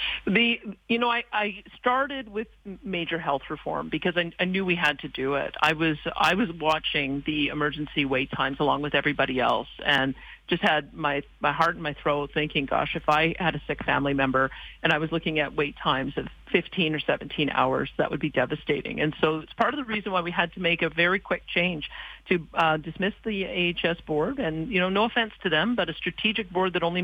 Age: 40-59